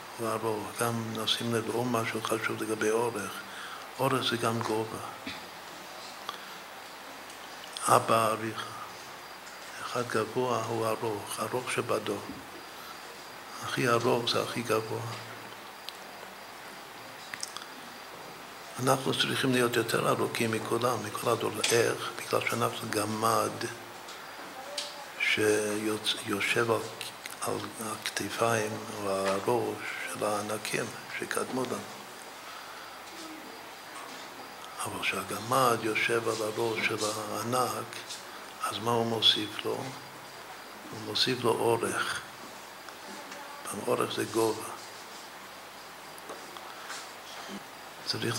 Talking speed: 90 wpm